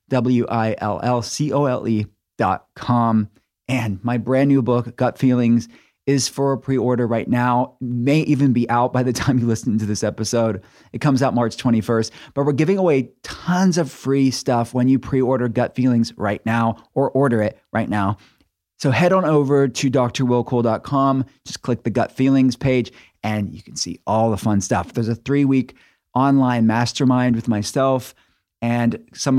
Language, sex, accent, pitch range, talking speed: English, male, American, 110-135 Hz, 165 wpm